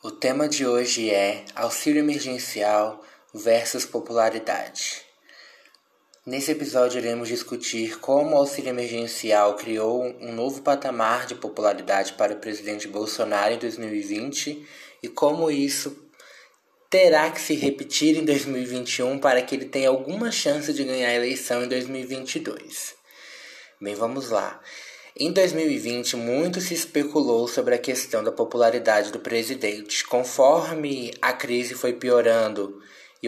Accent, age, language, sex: Brazilian, 20-39, Portuguese, male